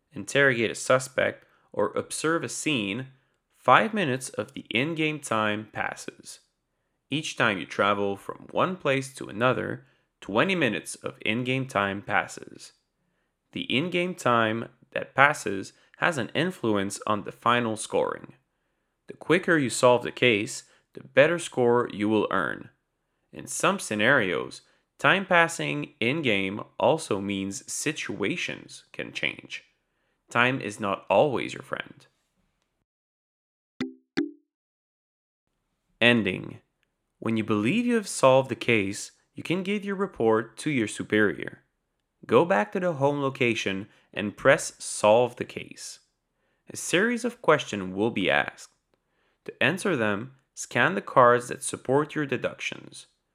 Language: English